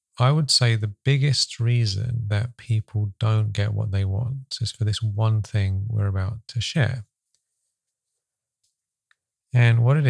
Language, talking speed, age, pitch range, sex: English, 150 wpm, 40-59, 110-130 Hz, male